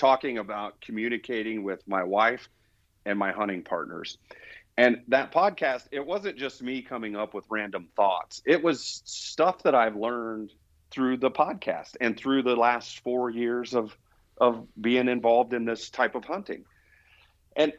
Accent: American